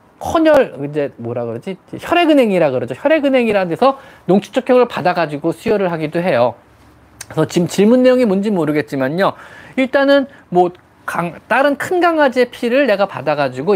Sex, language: male, Korean